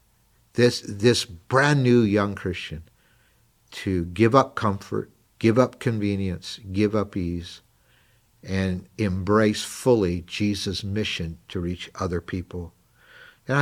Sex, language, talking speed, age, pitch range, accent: male, English, 115 wpm, 60-79, 95-115 Hz, American